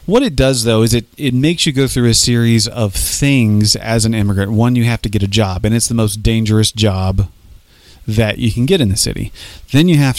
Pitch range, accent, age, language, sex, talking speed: 100-120 Hz, American, 30-49, English, male, 240 wpm